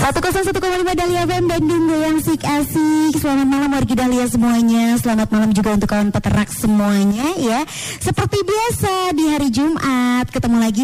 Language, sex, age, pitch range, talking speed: Indonesian, male, 20-39, 205-265 Hz, 150 wpm